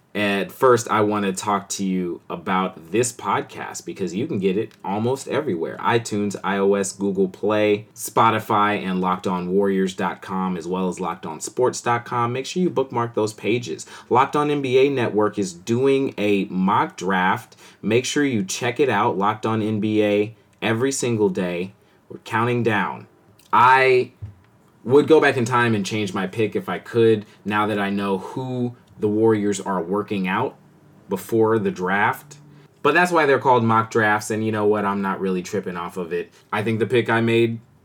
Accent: American